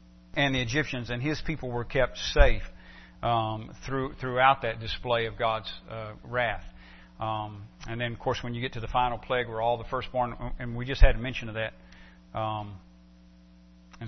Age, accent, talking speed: 40-59, American, 190 wpm